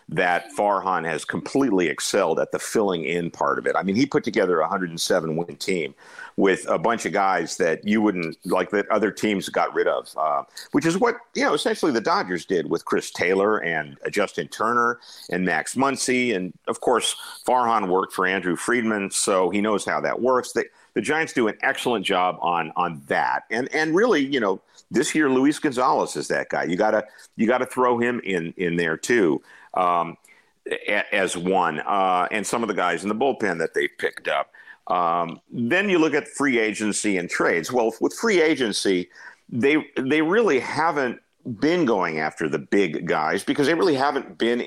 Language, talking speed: English, 195 wpm